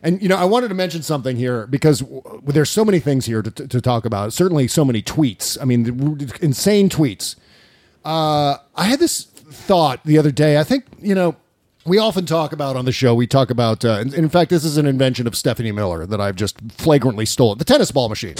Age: 40-59